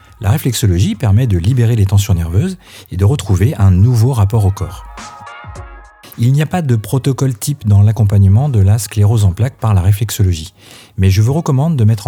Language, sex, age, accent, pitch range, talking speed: French, male, 40-59, French, 95-125 Hz, 195 wpm